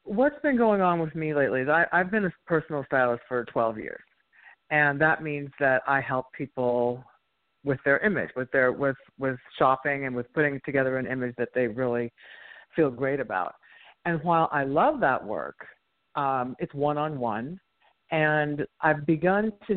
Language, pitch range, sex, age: English, 130-165 Hz, female, 50-69